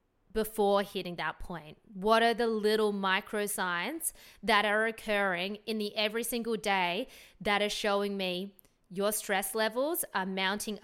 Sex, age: female, 20-39